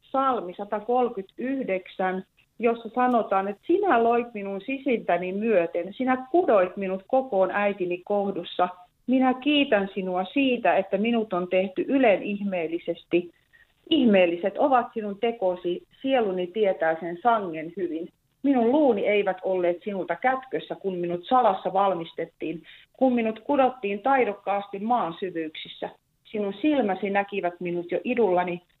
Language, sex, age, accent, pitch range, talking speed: Finnish, female, 40-59, native, 175-235 Hz, 120 wpm